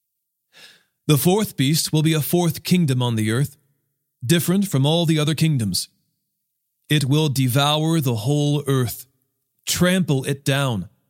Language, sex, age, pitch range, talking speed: English, male, 40-59, 125-155 Hz, 140 wpm